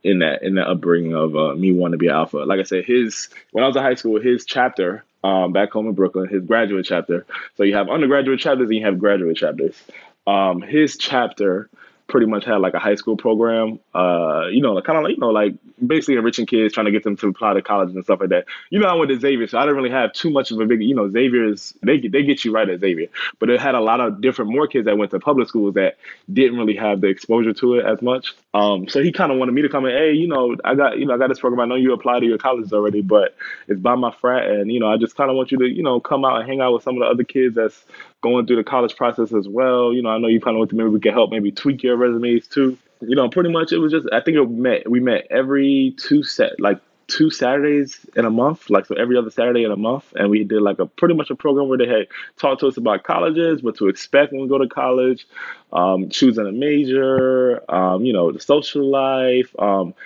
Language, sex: English, male